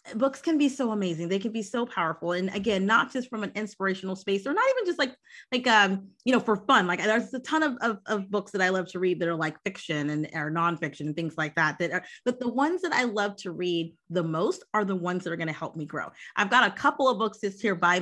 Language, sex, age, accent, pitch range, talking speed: English, female, 30-49, American, 170-225 Hz, 275 wpm